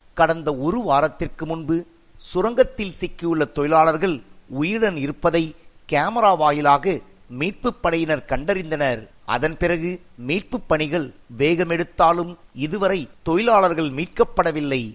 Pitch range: 150-180 Hz